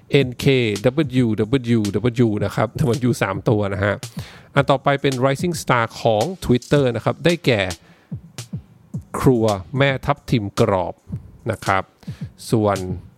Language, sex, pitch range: English, male, 105-140 Hz